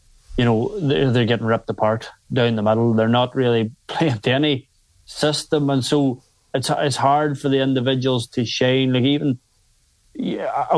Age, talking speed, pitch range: 20-39, 160 wpm, 115-135 Hz